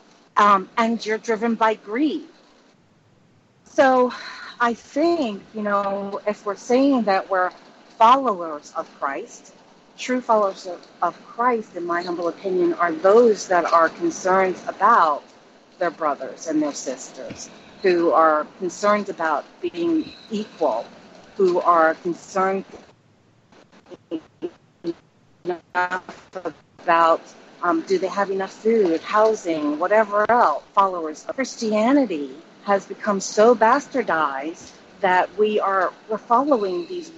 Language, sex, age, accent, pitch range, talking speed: English, female, 40-59, American, 185-245 Hz, 110 wpm